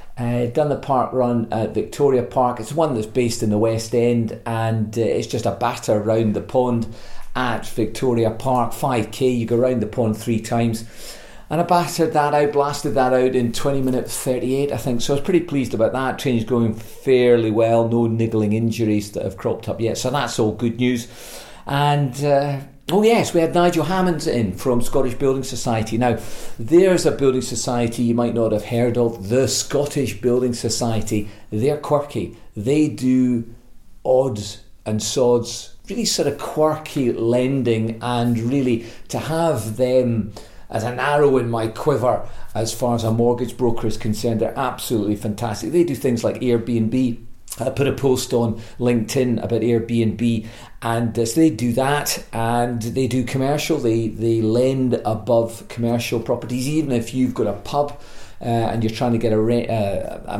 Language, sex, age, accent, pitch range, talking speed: English, male, 40-59, British, 115-130 Hz, 175 wpm